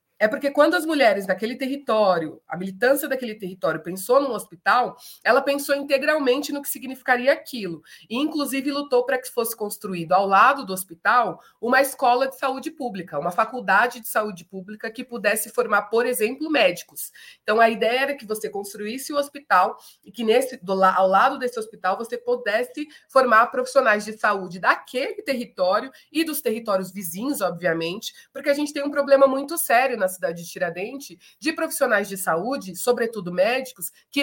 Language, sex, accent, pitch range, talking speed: Portuguese, female, Brazilian, 200-270 Hz, 175 wpm